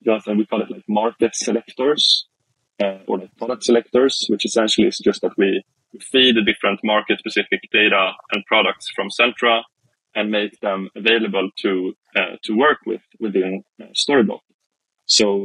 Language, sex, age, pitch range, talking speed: English, male, 20-39, 100-115 Hz, 150 wpm